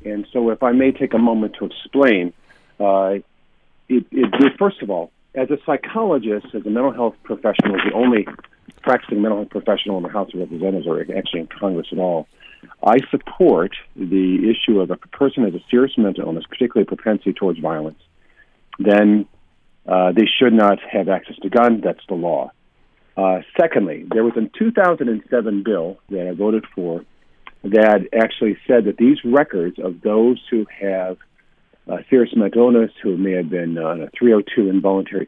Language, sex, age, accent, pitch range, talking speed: English, male, 50-69, American, 95-115 Hz, 170 wpm